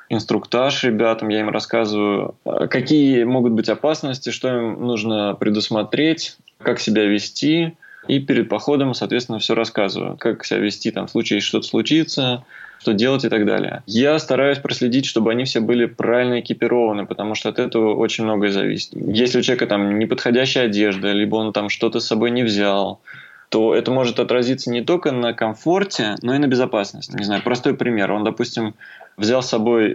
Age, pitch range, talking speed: 20-39, 105-125 Hz, 170 wpm